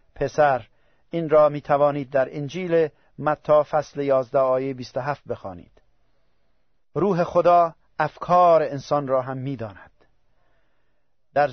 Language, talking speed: Persian, 105 wpm